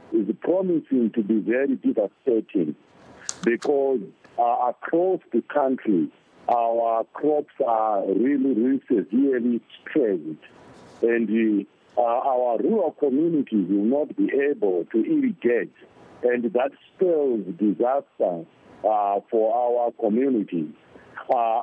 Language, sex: English, male